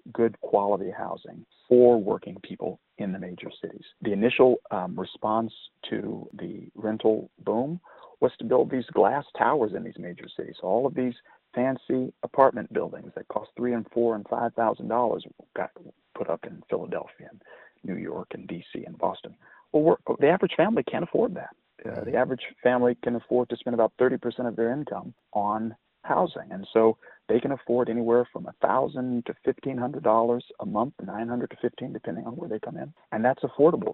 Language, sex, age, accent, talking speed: English, male, 40-59, American, 180 wpm